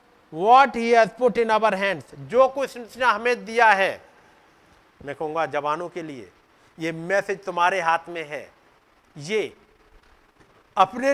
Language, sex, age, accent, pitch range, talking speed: Hindi, male, 50-69, native, 170-245 Hz, 135 wpm